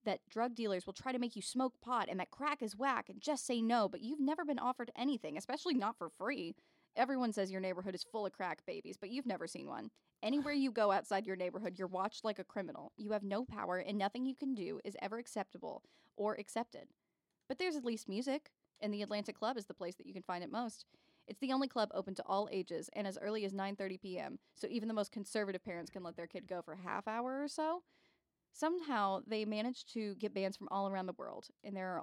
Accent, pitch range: American, 195-245 Hz